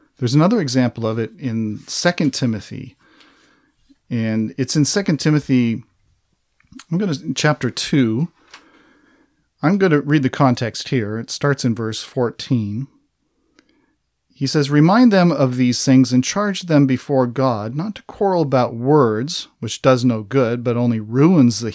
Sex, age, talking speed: male, 40-59, 150 wpm